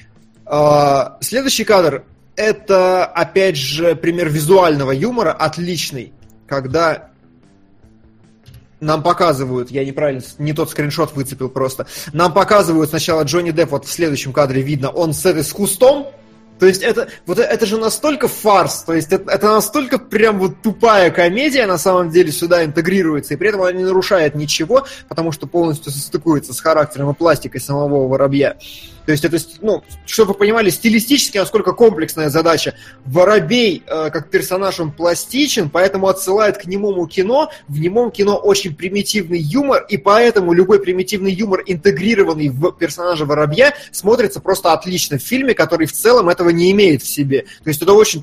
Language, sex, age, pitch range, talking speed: Russian, male, 20-39, 150-200 Hz, 160 wpm